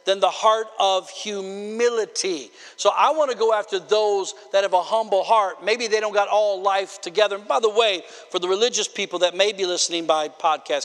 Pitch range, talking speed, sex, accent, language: 175-225 Hz, 205 wpm, male, American, English